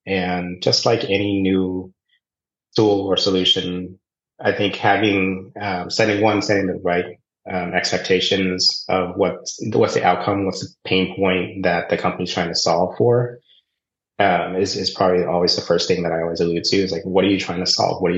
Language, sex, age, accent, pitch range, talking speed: English, male, 30-49, American, 90-100 Hz, 190 wpm